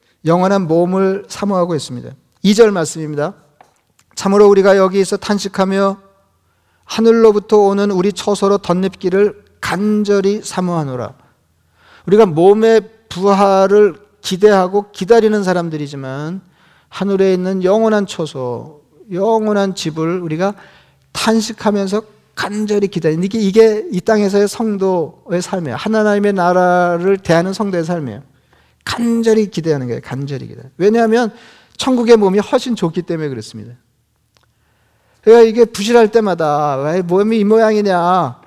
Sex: male